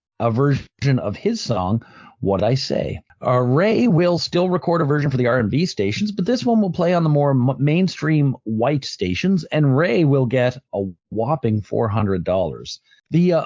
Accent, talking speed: American, 175 wpm